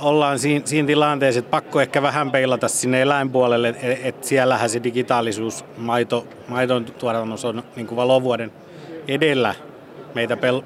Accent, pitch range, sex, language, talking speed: native, 120-145 Hz, male, Finnish, 120 wpm